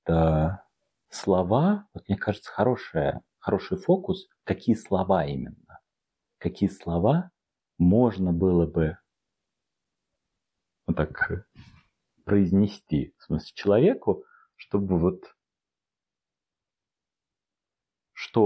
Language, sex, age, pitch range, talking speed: Russian, male, 40-59, 85-135 Hz, 80 wpm